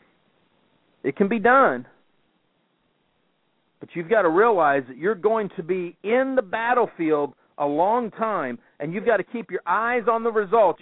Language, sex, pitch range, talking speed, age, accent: English, male, 155-230 Hz, 165 wpm, 50-69, American